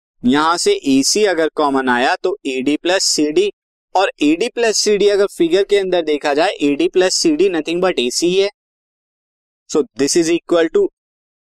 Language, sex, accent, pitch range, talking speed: Hindi, male, native, 140-225 Hz, 170 wpm